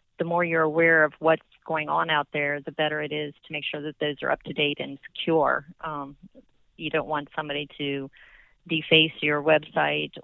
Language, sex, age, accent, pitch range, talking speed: English, female, 30-49, American, 145-165 Hz, 190 wpm